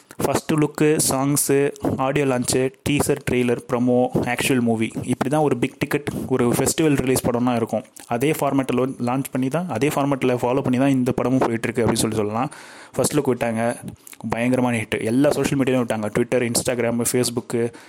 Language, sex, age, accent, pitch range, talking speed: Tamil, male, 30-49, native, 120-140 Hz, 160 wpm